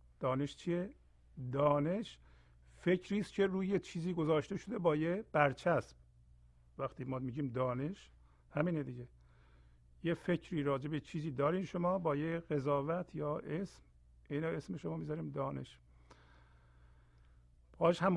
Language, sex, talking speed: Persian, male, 120 wpm